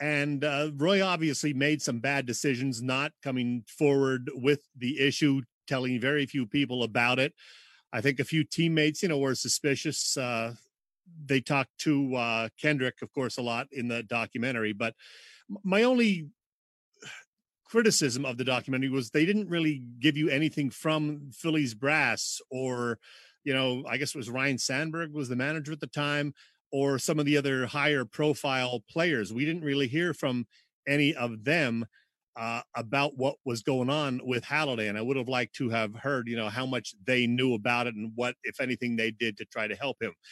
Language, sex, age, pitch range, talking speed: English, male, 40-59, 120-150 Hz, 185 wpm